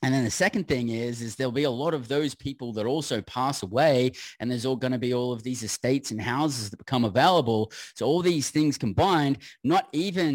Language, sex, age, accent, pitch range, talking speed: English, male, 20-39, Australian, 115-140 Hz, 230 wpm